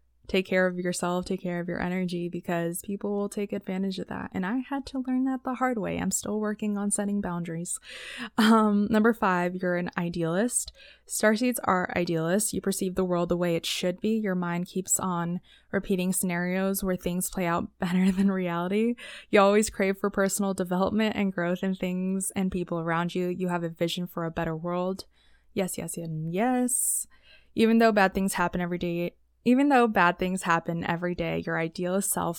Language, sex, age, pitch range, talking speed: English, female, 20-39, 175-205 Hz, 195 wpm